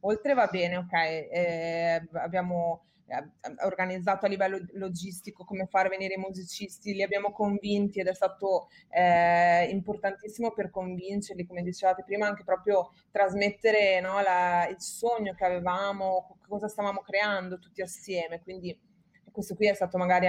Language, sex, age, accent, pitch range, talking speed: Italian, female, 20-39, native, 175-200 Hz, 145 wpm